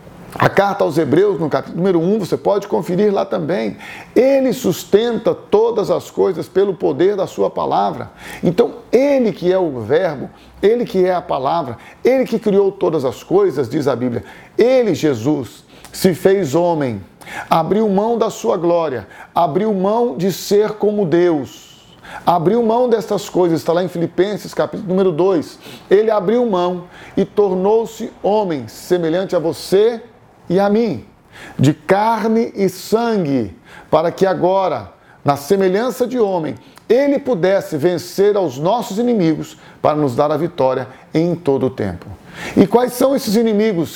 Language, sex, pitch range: Portuguese, male, 170-220 Hz